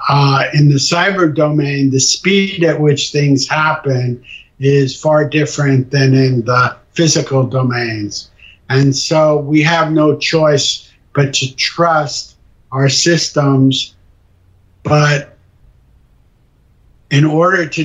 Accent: American